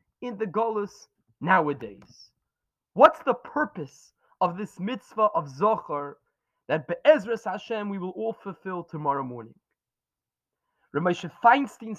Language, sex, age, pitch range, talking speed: English, male, 20-39, 165-235 Hz, 115 wpm